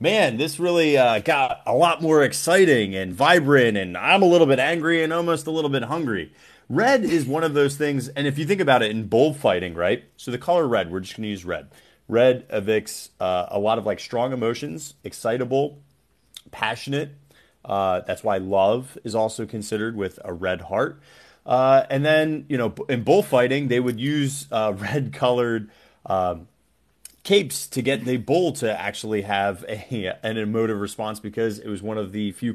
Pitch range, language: 105-140 Hz, English